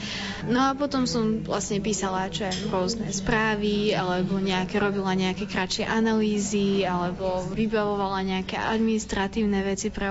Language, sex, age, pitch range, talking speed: Slovak, female, 20-39, 195-215 Hz, 135 wpm